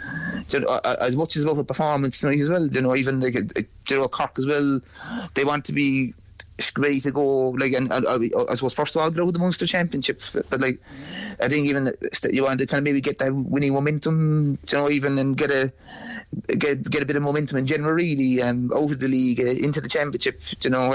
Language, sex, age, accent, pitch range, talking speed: English, male, 30-49, British, 130-150 Hz, 240 wpm